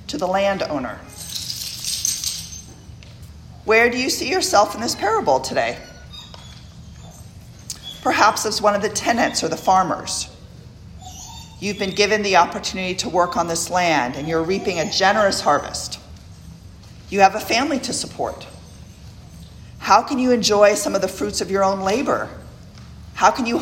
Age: 40-59